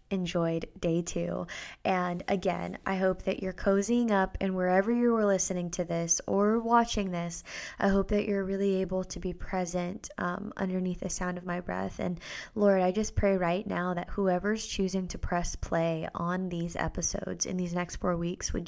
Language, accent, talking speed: English, American, 190 wpm